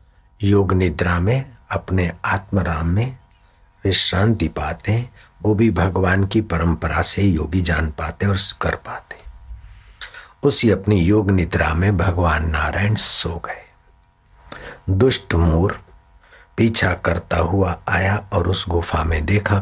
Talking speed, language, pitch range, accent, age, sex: 85 wpm, Hindi, 85-100 Hz, native, 60-79, male